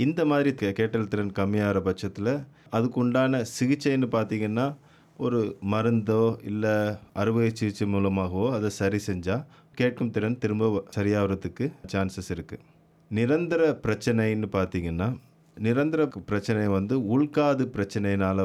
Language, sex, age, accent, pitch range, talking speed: Tamil, male, 30-49, native, 95-120 Hz, 105 wpm